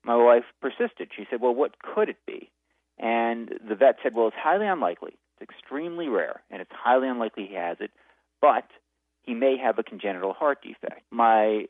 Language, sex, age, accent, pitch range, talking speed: English, male, 40-59, American, 115-160 Hz, 190 wpm